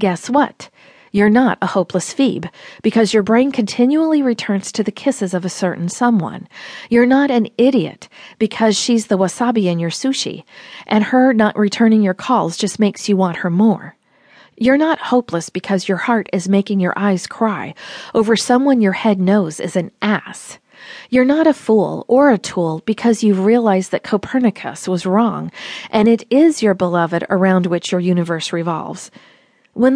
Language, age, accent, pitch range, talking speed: English, 40-59, American, 185-240 Hz, 170 wpm